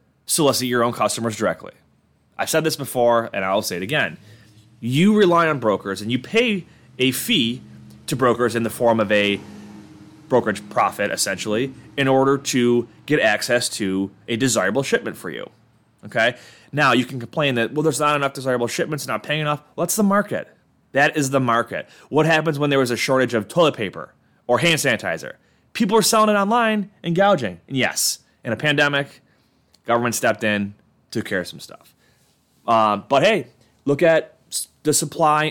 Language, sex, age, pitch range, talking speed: English, male, 20-39, 115-155 Hz, 180 wpm